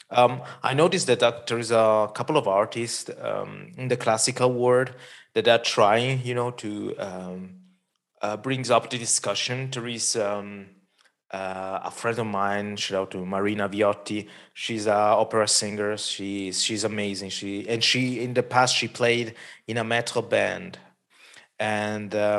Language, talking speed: English, 160 wpm